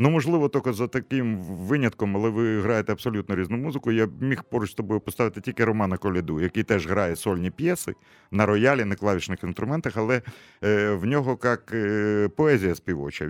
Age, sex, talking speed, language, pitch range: 50-69, male, 165 wpm, Russian, 95-120 Hz